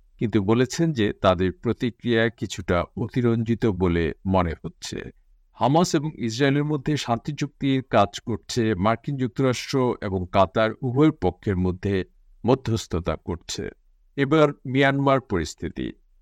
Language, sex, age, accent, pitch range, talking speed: Bengali, male, 50-69, native, 100-140 Hz, 110 wpm